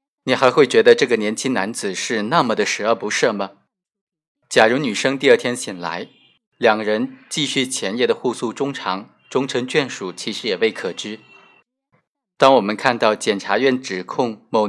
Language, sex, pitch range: Chinese, male, 110-150 Hz